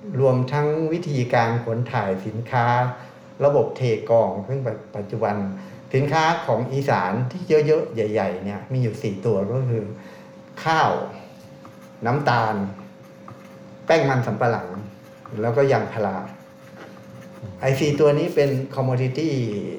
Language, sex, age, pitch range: Thai, male, 60-79, 105-135 Hz